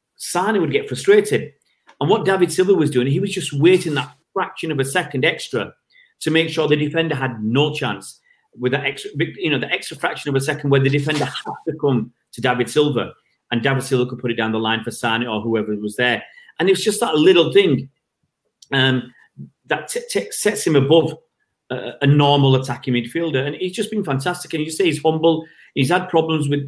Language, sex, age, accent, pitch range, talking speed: English, male, 40-59, British, 125-160 Hz, 215 wpm